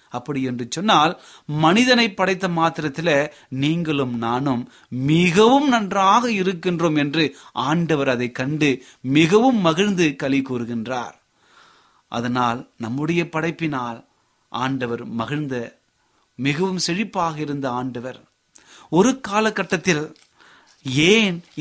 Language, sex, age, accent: Tamil, male, 30-49, native